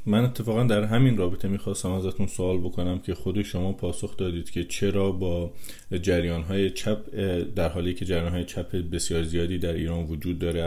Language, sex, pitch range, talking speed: English, male, 80-95 Hz, 170 wpm